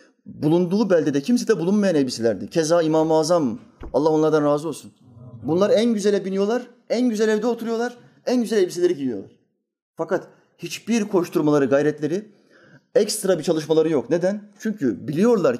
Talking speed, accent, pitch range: 140 wpm, native, 150-210 Hz